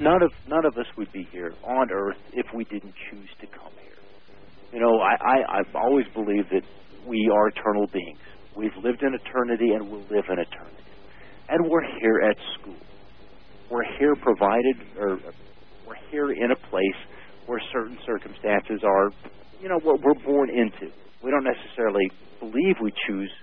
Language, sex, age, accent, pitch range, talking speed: English, male, 50-69, American, 100-135 Hz, 180 wpm